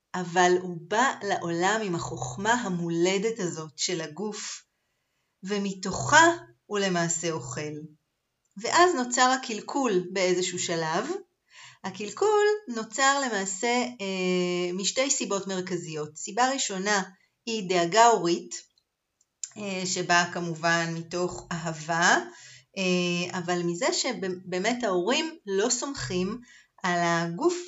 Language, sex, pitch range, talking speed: Hebrew, female, 175-230 Hz, 100 wpm